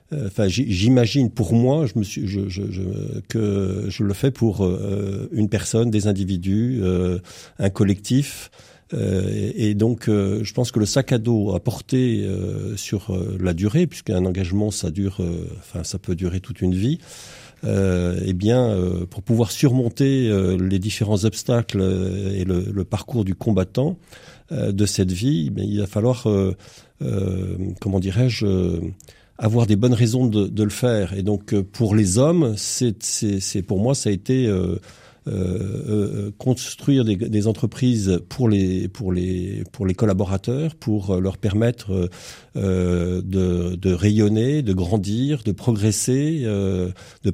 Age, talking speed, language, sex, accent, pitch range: 50-69, 145 wpm, French, male, French, 95-120 Hz